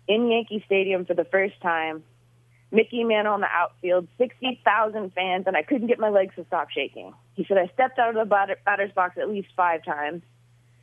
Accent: American